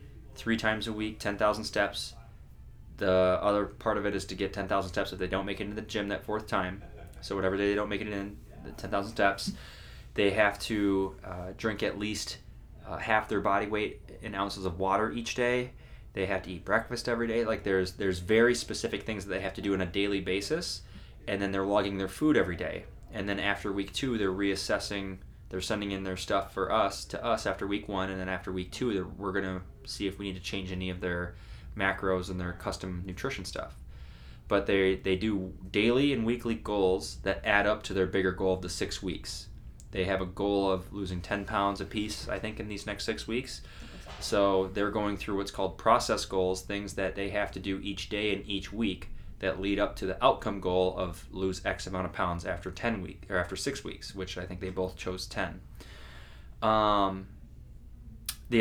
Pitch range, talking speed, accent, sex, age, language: 95-105 Hz, 215 wpm, American, male, 20-39, English